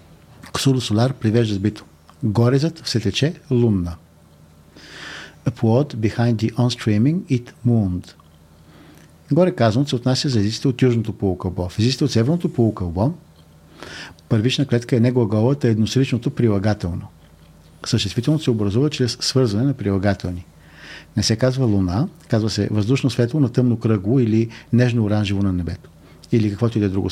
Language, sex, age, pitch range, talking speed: Bulgarian, male, 50-69, 95-125 Hz, 130 wpm